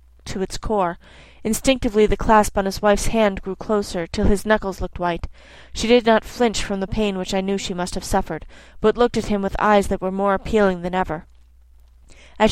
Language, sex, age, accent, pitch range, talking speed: English, female, 30-49, American, 190-220 Hz, 210 wpm